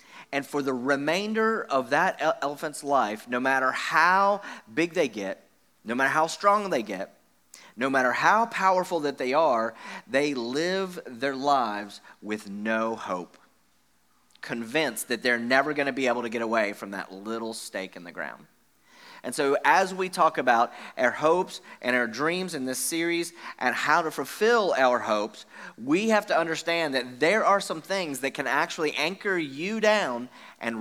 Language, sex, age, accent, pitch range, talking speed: English, male, 30-49, American, 125-180 Hz, 170 wpm